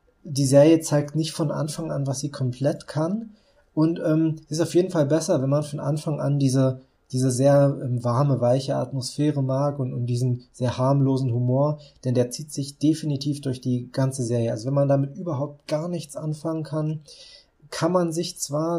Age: 20-39